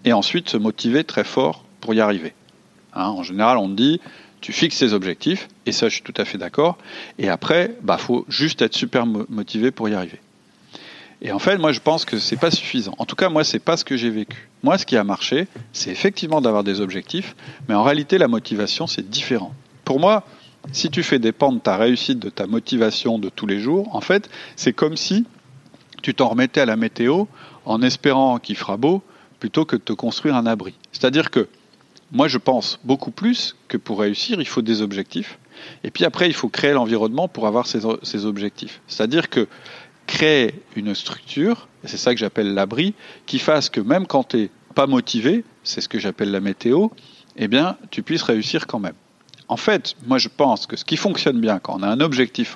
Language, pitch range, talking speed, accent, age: French, 110-170 Hz, 215 wpm, French, 40-59